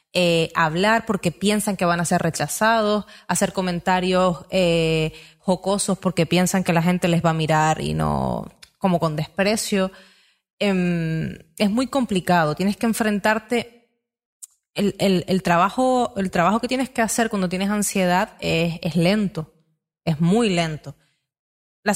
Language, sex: Spanish, female